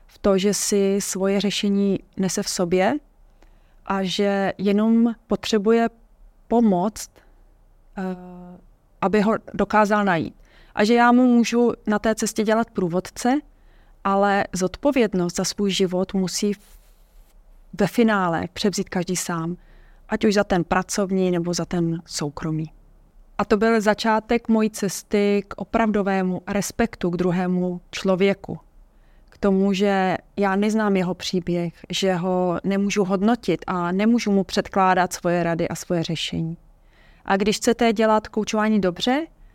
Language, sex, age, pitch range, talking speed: Czech, female, 30-49, 180-215 Hz, 130 wpm